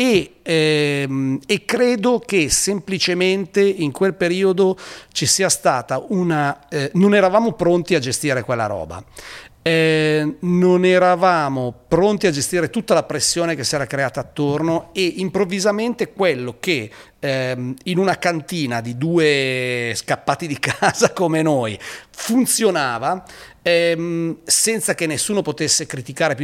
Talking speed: 130 wpm